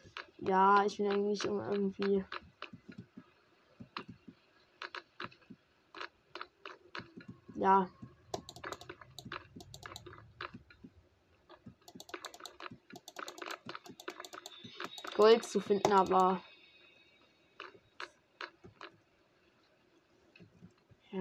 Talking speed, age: 35 wpm, 20-39